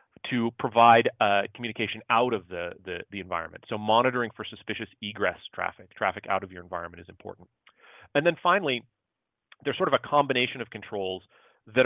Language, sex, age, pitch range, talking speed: English, male, 30-49, 100-120 Hz, 170 wpm